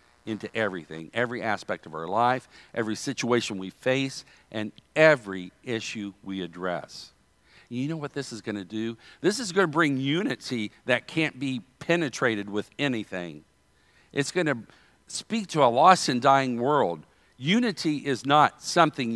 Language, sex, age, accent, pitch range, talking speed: English, male, 50-69, American, 110-155 Hz, 155 wpm